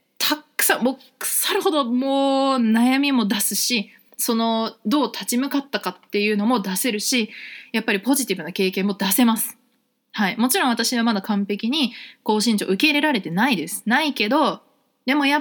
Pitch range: 195-255 Hz